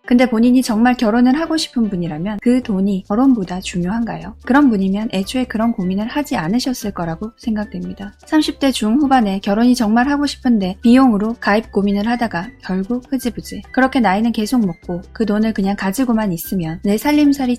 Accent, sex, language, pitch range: native, female, Korean, 195-255 Hz